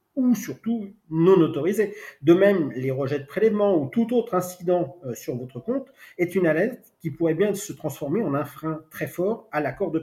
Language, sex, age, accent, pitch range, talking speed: French, male, 40-59, French, 150-195 Hz, 195 wpm